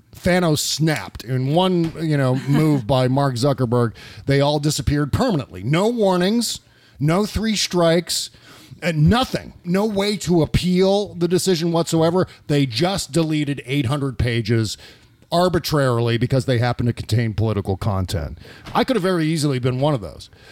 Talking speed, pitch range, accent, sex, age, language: 145 wpm, 115-165 Hz, American, male, 40-59, English